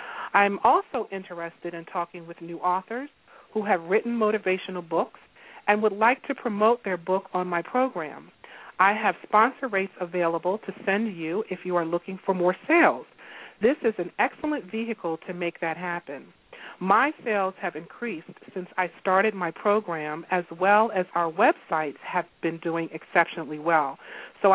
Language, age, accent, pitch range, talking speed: English, 40-59, American, 170-210 Hz, 165 wpm